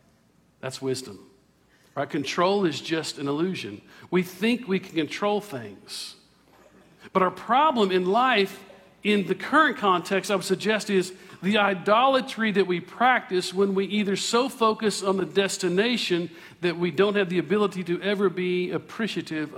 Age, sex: 50-69, male